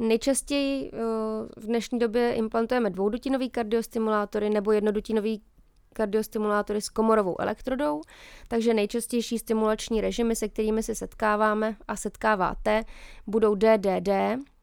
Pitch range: 205-235 Hz